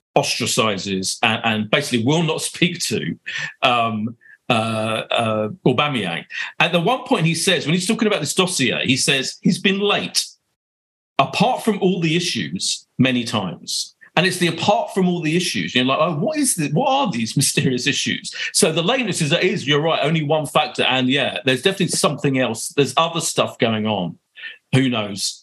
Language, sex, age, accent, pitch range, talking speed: English, male, 50-69, British, 120-175 Hz, 185 wpm